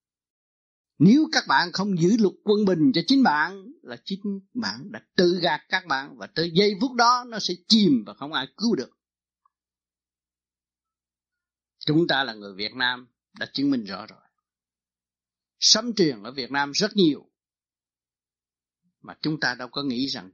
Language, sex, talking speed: Vietnamese, male, 170 wpm